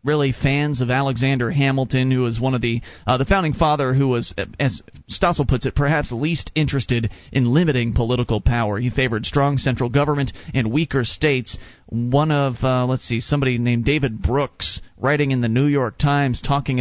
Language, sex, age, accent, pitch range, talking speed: English, male, 30-49, American, 125-175 Hz, 180 wpm